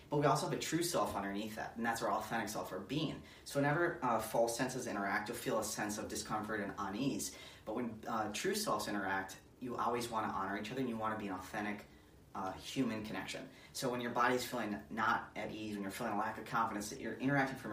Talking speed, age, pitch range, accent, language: 245 wpm, 30-49, 100-125 Hz, American, English